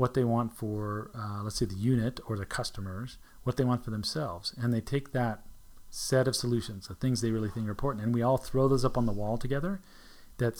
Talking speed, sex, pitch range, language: 240 wpm, male, 105-130 Hz, English